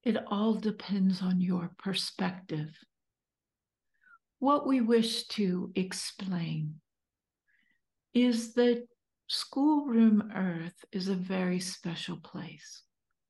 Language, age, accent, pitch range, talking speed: English, 60-79, American, 185-230 Hz, 90 wpm